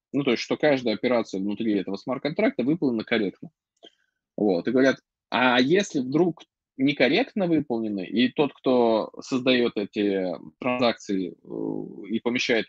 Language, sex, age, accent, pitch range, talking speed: Russian, male, 20-39, native, 110-160 Hz, 130 wpm